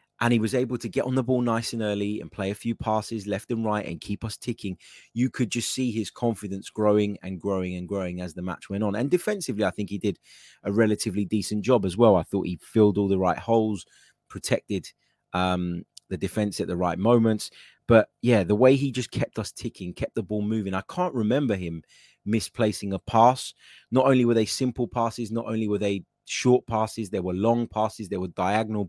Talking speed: 220 wpm